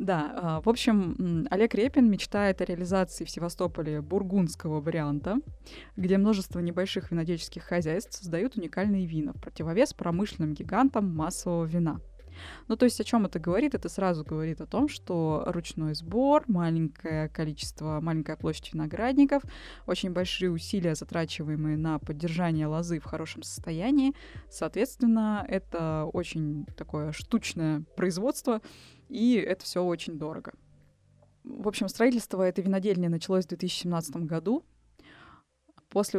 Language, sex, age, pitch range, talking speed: Russian, female, 20-39, 160-205 Hz, 130 wpm